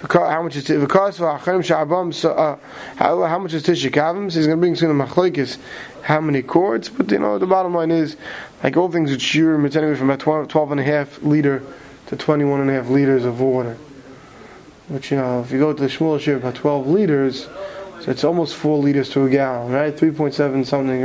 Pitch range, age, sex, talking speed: 135-155 Hz, 20-39, male, 205 wpm